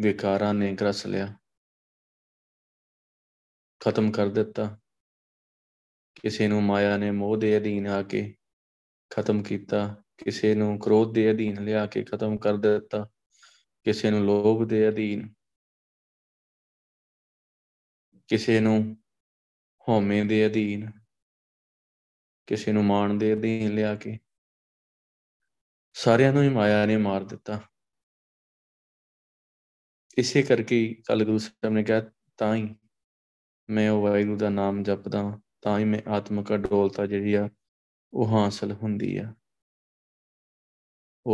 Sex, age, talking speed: male, 20-39, 115 wpm